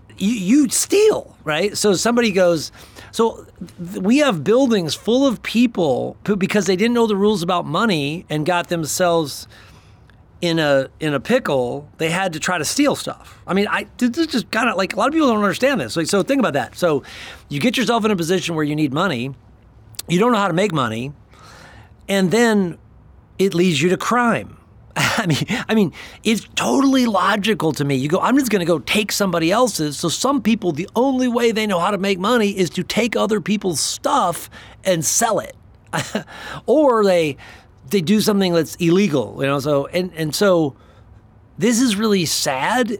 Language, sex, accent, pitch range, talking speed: English, male, American, 145-220 Hz, 195 wpm